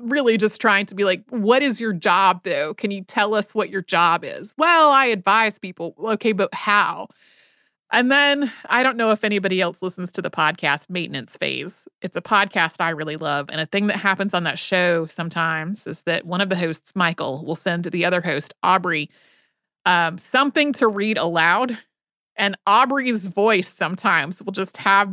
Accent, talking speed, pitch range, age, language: American, 190 wpm, 185-245 Hz, 30-49, English